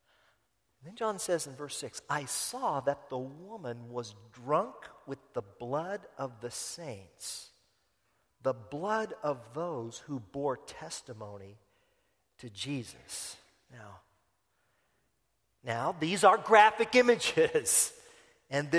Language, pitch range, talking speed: English, 160-225 Hz, 110 wpm